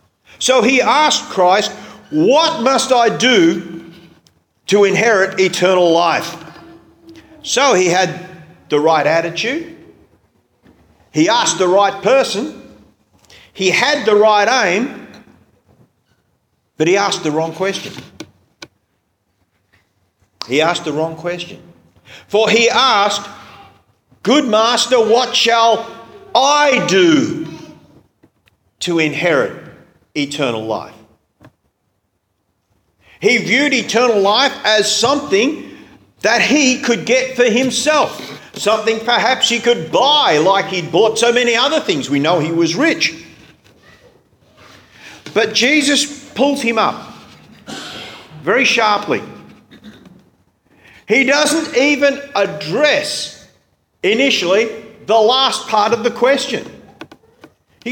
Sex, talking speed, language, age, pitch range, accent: male, 105 wpm, English, 40-59, 170-260 Hz, Australian